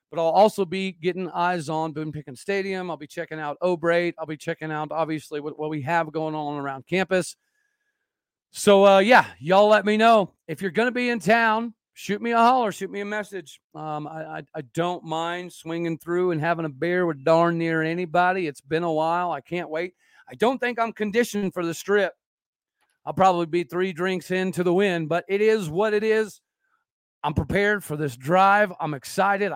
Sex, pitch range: male, 160-205 Hz